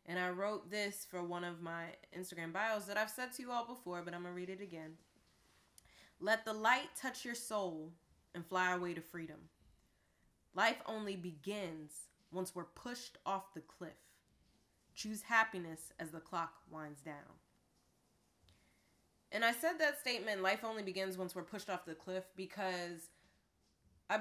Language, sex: English, female